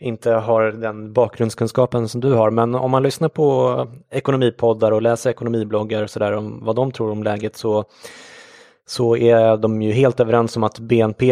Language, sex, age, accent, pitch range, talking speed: English, male, 20-39, Swedish, 105-120 Hz, 180 wpm